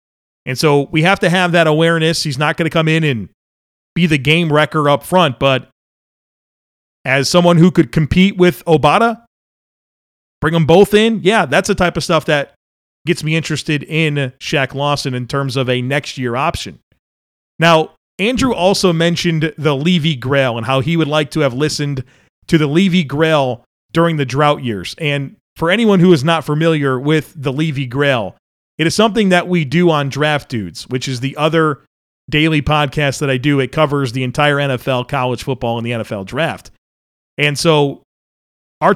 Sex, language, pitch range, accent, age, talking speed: male, English, 140-170 Hz, American, 30-49, 180 wpm